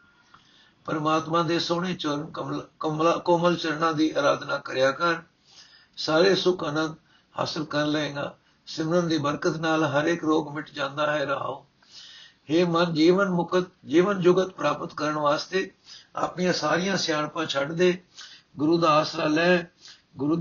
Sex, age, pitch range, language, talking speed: male, 60-79, 155-175 Hz, Punjabi, 140 wpm